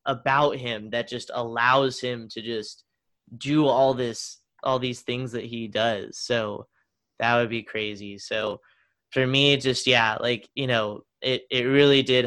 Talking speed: 165 wpm